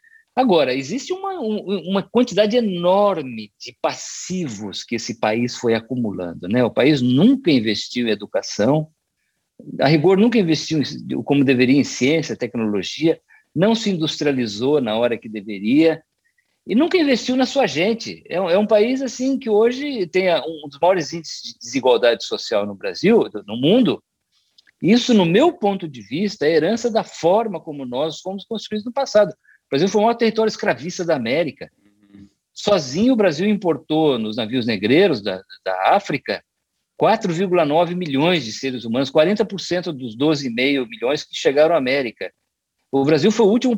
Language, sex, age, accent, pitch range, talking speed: Portuguese, male, 50-69, Brazilian, 130-210 Hz, 155 wpm